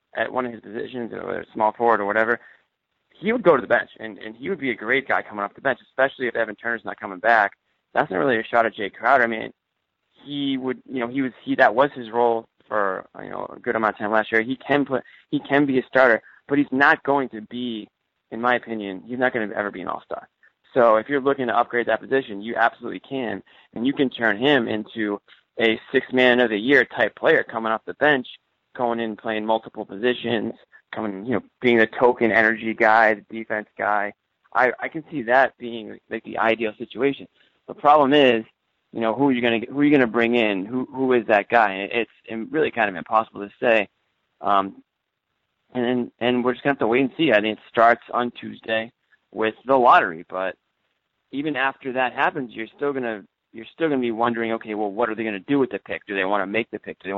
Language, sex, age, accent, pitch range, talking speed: English, male, 20-39, American, 110-130 Hz, 235 wpm